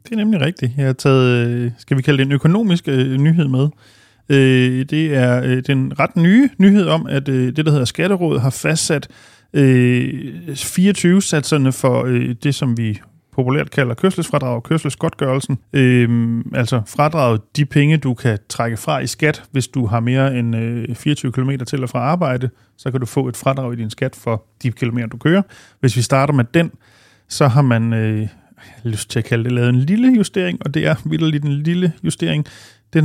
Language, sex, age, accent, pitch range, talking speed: Danish, male, 30-49, native, 120-150 Hz, 185 wpm